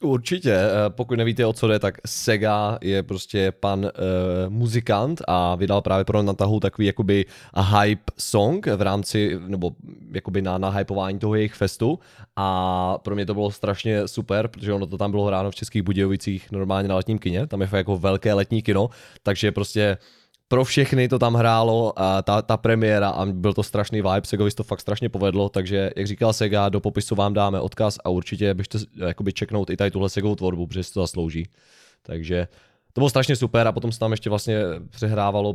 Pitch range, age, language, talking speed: 95-105 Hz, 20-39, Czech, 195 wpm